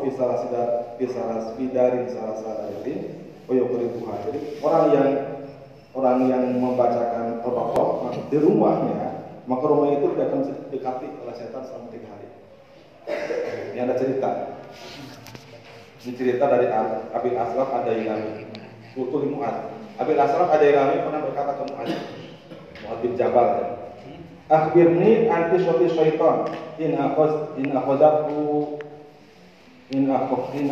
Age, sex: 40-59, male